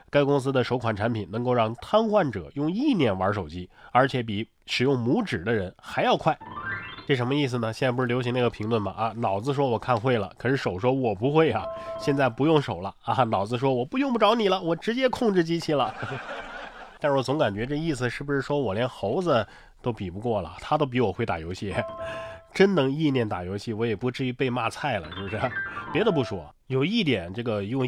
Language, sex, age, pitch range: Chinese, male, 20-39, 110-150 Hz